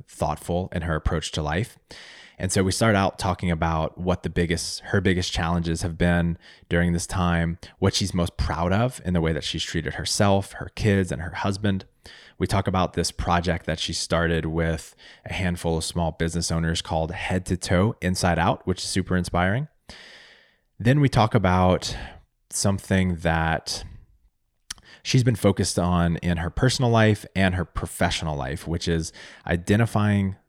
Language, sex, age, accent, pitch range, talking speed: English, male, 20-39, American, 85-95 Hz, 170 wpm